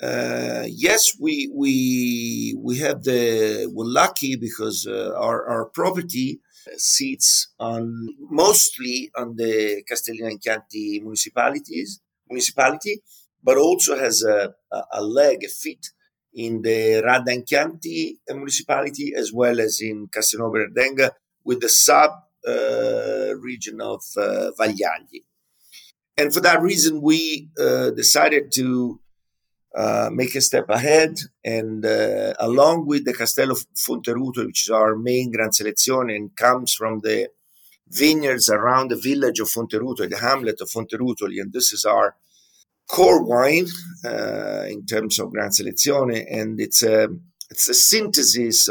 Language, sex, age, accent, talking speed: English, male, 50-69, Italian, 135 wpm